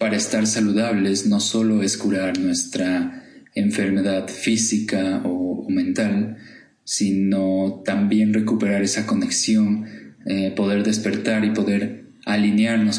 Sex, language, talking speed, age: male, Spanish, 100 wpm, 20-39